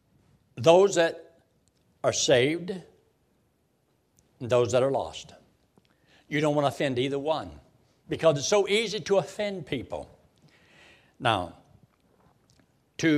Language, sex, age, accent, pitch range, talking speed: English, male, 60-79, American, 110-155 Hz, 115 wpm